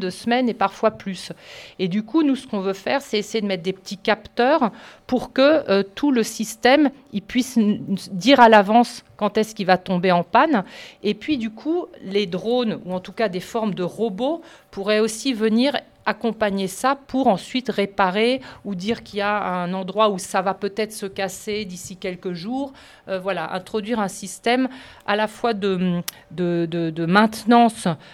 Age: 40-59